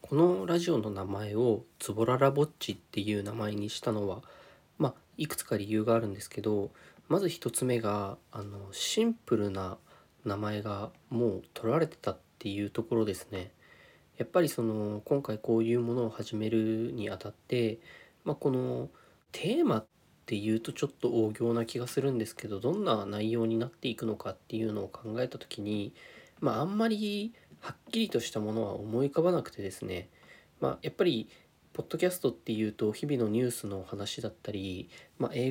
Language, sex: Japanese, male